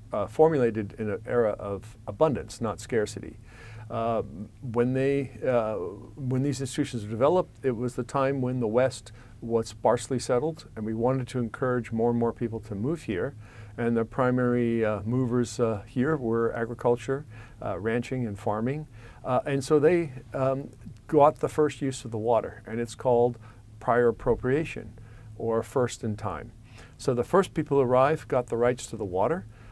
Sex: male